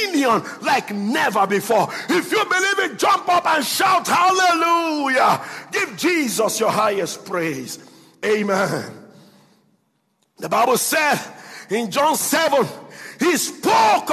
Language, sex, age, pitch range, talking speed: English, male, 50-69, 225-345 Hz, 110 wpm